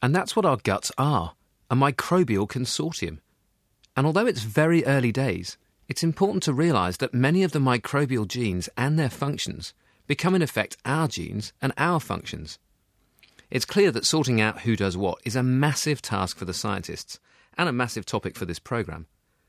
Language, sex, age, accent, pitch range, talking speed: English, male, 40-59, British, 100-145 Hz, 180 wpm